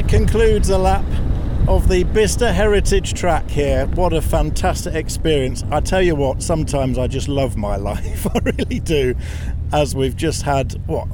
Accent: British